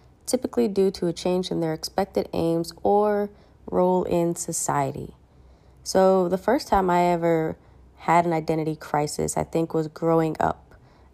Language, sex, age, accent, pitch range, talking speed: English, female, 20-39, American, 155-175 Hz, 150 wpm